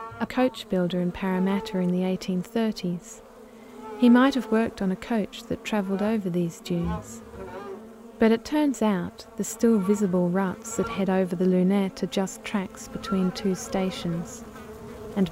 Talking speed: 155 wpm